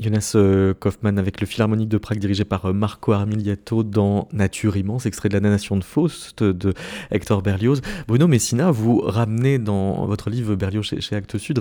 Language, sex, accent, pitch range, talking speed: French, male, French, 100-130 Hz, 190 wpm